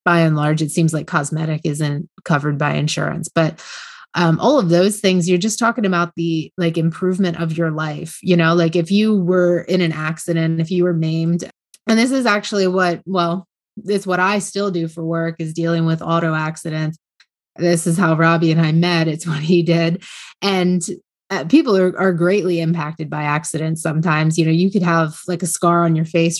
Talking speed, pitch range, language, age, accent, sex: 205 wpm, 160-180 Hz, English, 20-39, American, female